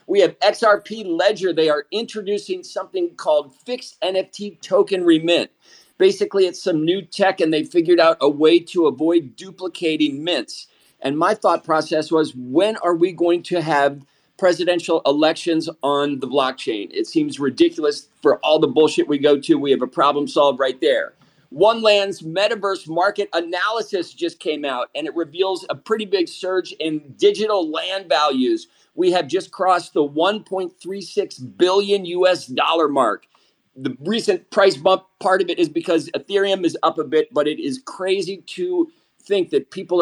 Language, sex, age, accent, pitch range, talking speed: English, male, 50-69, American, 160-220 Hz, 170 wpm